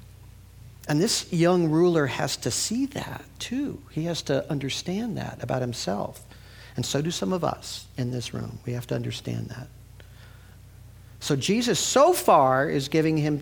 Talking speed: 165 wpm